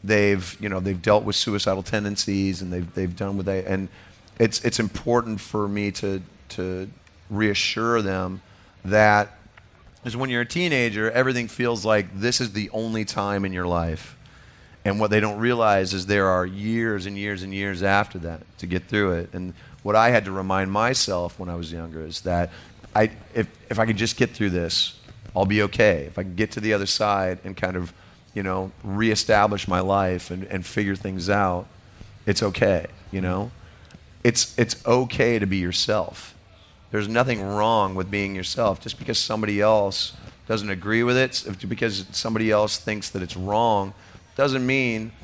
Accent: American